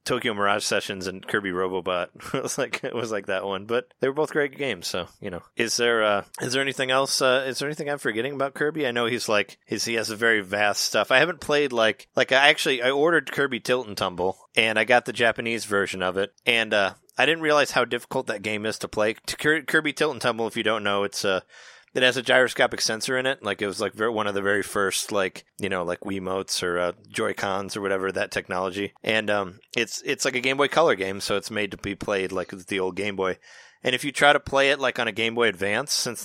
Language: English